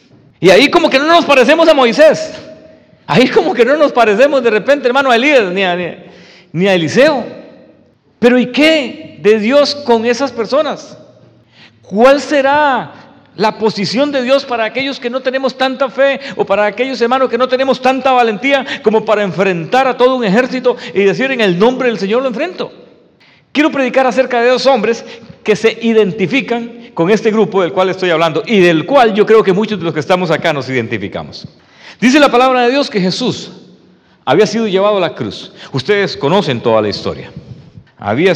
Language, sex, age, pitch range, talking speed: English, male, 50-69, 185-260 Hz, 185 wpm